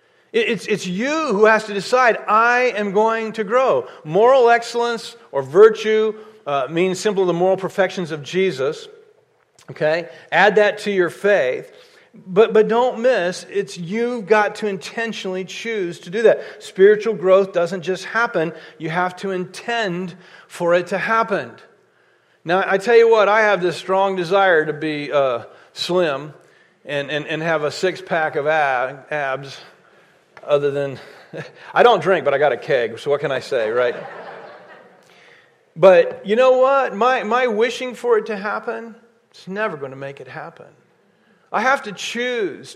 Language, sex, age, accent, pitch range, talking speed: English, male, 40-59, American, 185-245 Hz, 165 wpm